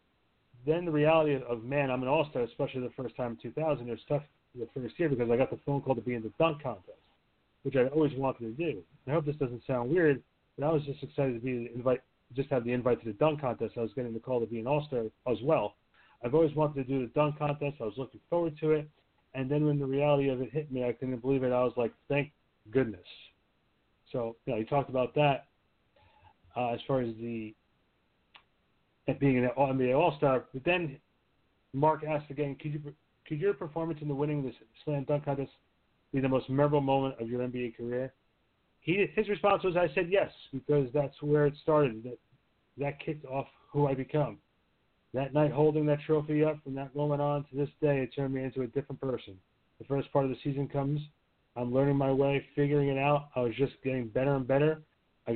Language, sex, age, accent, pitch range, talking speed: English, male, 40-59, American, 125-150 Hz, 230 wpm